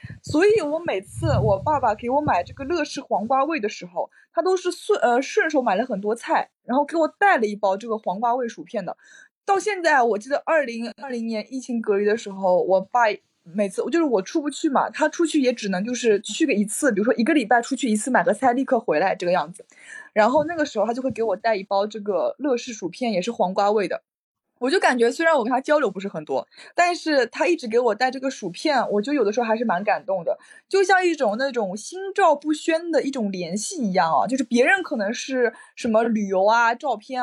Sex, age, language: female, 20-39, Chinese